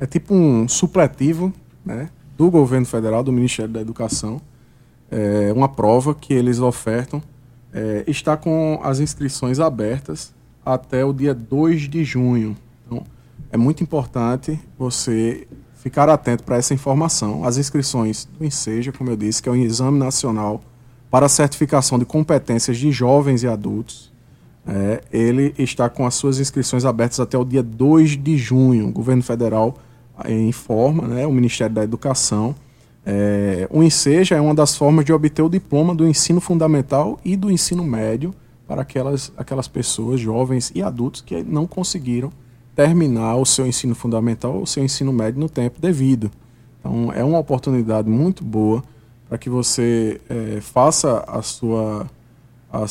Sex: male